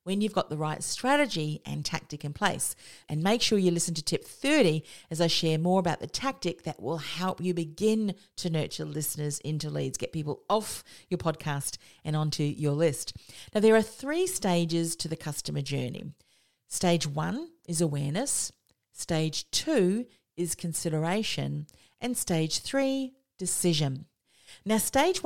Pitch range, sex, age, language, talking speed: 155-205 Hz, female, 40-59, English, 160 wpm